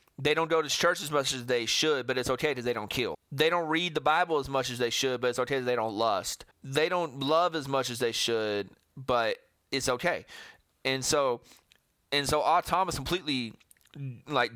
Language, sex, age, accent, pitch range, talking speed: English, male, 30-49, American, 125-165 Hz, 220 wpm